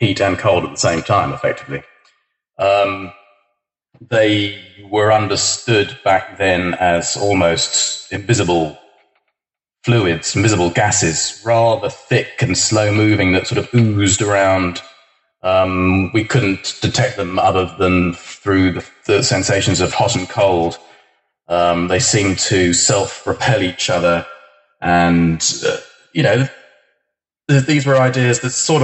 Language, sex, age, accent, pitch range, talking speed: English, male, 30-49, British, 90-125 Hz, 125 wpm